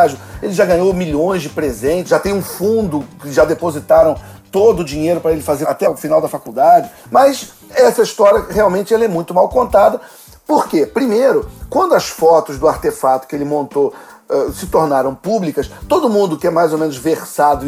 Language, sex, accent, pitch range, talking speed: Portuguese, male, Brazilian, 140-185 Hz, 185 wpm